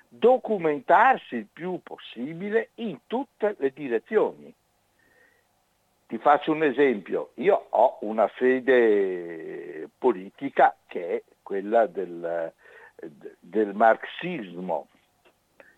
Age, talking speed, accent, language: 60-79, 90 wpm, native, Italian